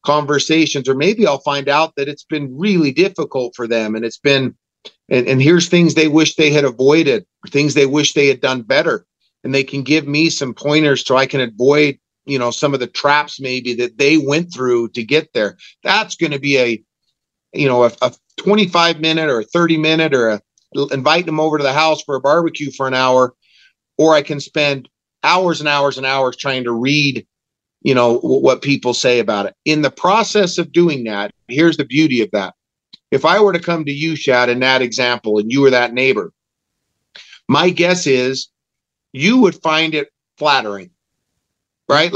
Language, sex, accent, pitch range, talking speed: English, male, American, 130-160 Hz, 200 wpm